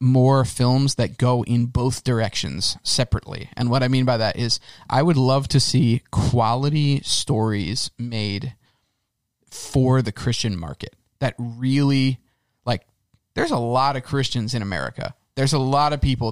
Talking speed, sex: 155 wpm, male